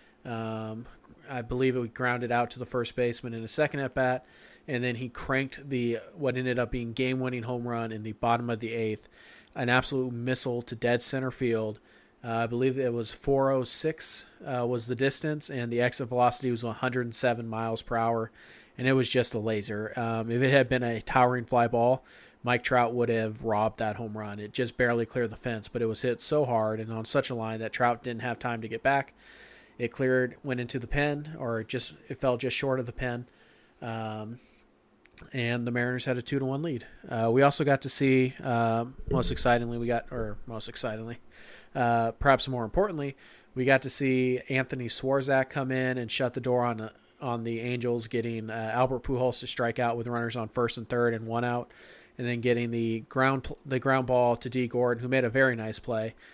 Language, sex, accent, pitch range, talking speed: English, male, American, 115-130 Hz, 210 wpm